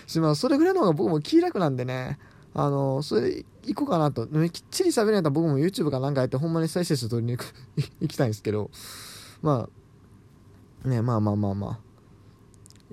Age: 20-39